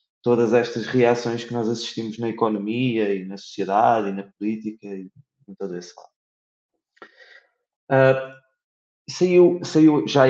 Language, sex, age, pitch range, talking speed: Portuguese, male, 20-39, 105-130 Hz, 135 wpm